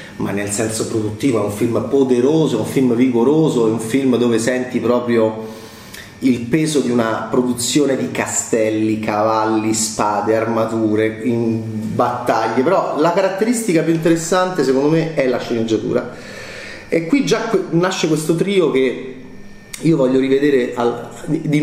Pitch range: 110-140 Hz